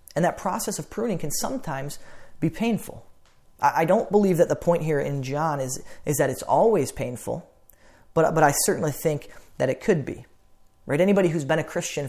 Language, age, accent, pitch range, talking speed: English, 30-49, American, 135-165 Hz, 195 wpm